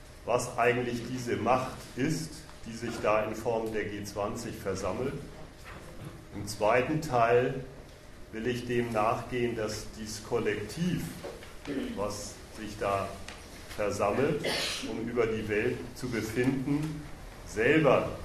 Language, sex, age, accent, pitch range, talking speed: German, male, 40-59, German, 105-130 Hz, 110 wpm